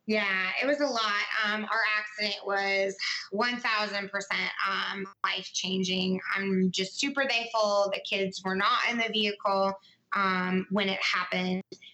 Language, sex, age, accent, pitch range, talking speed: English, female, 20-39, American, 190-220 Hz, 130 wpm